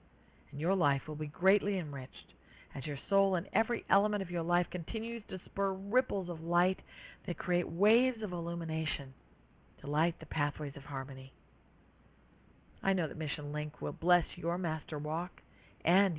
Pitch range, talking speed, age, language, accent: 145-190 Hz, 160 wpm, 50-69, English, American